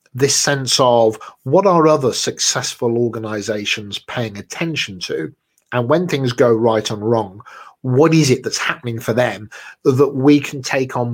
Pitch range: 110-140 Hz